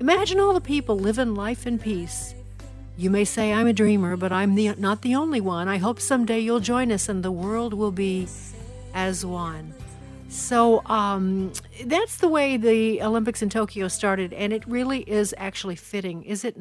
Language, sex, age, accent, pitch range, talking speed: English, female, 60-79, American, 185-225 Hz, 185 wpm